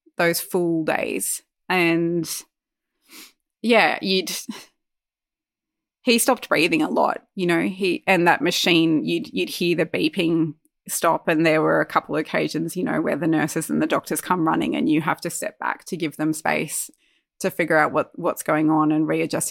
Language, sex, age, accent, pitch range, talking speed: English, female, 20-39, Australian, 170-230 Hz, 175 wpm